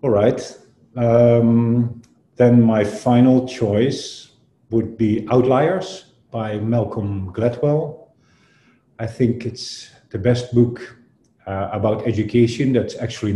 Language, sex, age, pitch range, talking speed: English, male, 50-69, 100-120 Hz, 110 wpm